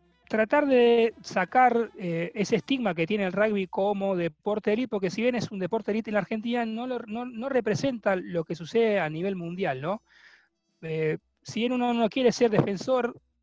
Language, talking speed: Spanish, 195 wpm